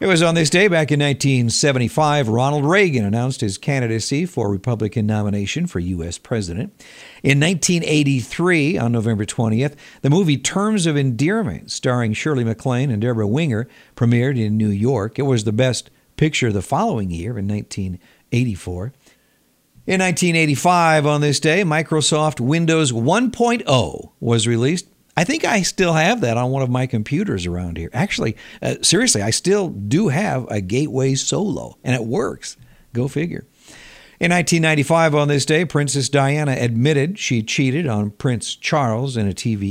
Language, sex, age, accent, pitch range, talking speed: English, male, 50-69, American, 115-155 Hz, 155 wpm